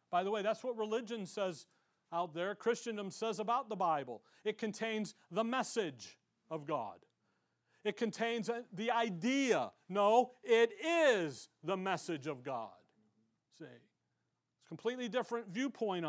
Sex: male